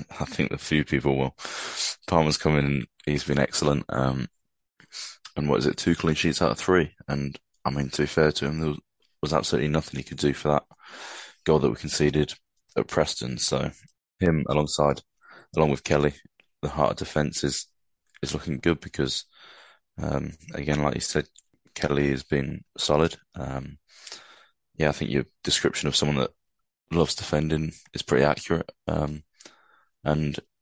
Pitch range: 70-80 Hz